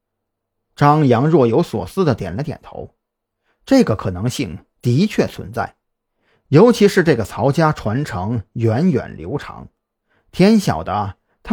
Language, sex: Chinese, male